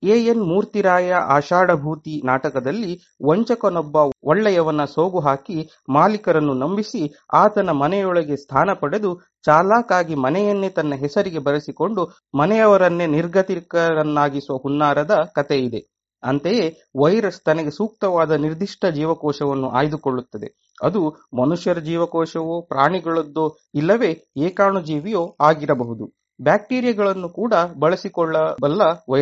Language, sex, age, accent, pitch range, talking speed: English, male, 30-49, Indian, 150-195 Hz, 85 wpm